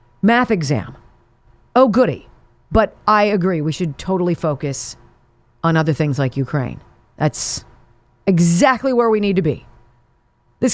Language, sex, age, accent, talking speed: English, female, 40-59, American, 135 wpm